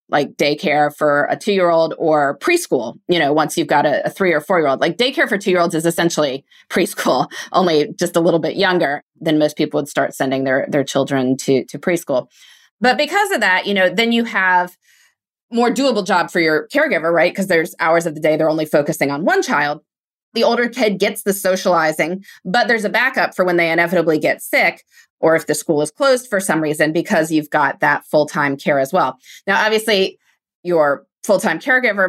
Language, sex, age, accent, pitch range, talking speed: English, female, 30-49, American, 155-205 Hz, 200 wpm